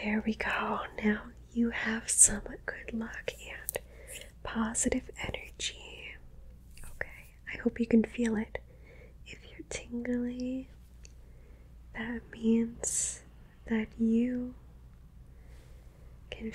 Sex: female